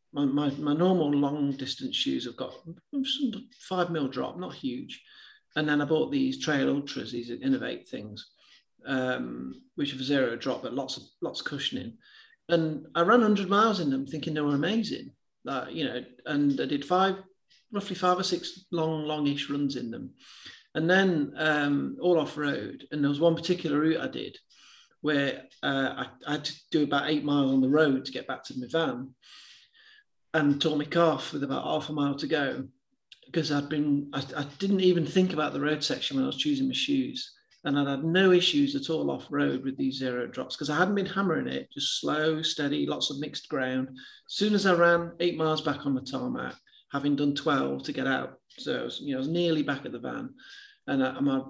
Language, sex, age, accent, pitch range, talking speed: English, male, 40-59, British, 140-190 Hz, 210 wpm